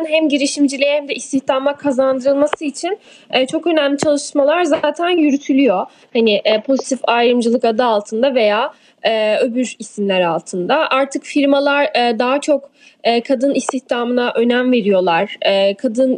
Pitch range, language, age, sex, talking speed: 245-310 Hz, Turkish, 10-29, female, 110 wpm